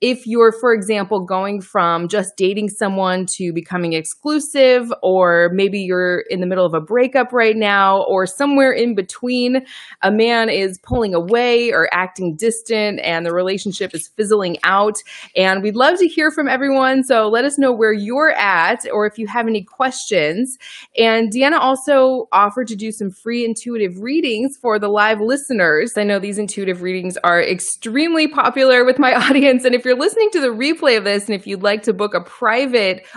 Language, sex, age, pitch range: English, female, 20-39, 190-250 Hz